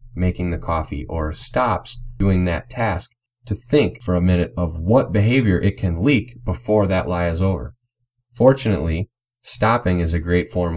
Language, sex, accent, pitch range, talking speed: English, male, American, 90-115 Hz, 165 wpm